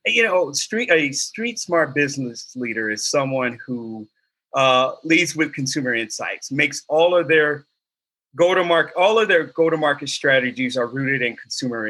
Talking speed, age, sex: 170 wpm, 30-49, male